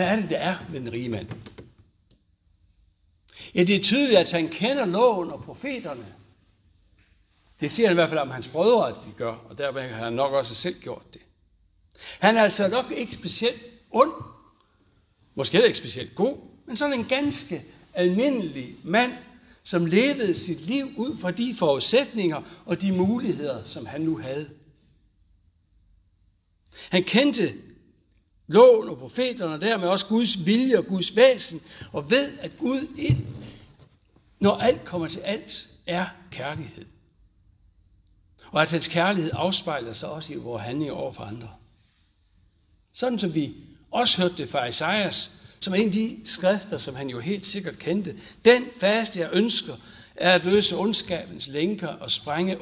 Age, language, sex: 60-79, Danish, male